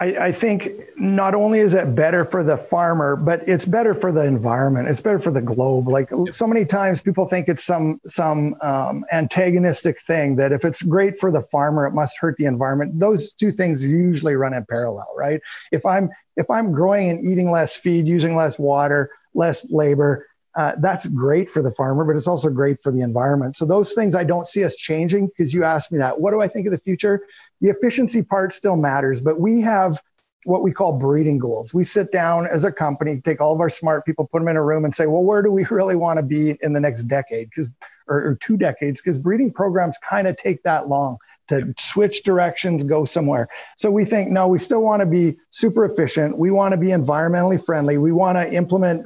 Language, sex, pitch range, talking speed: English, male, 150-190 Hz, 225 wpm